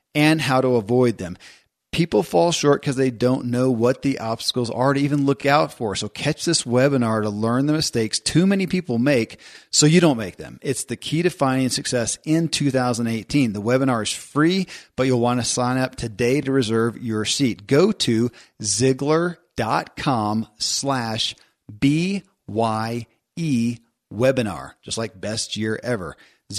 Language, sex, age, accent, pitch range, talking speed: English, male, 40-59, American, 115-145 Hz, 160 wpm